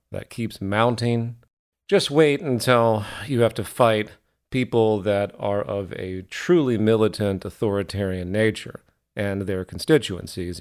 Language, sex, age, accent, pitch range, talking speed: English, male, 40-59, American, 100-130 Hz, 125 wpm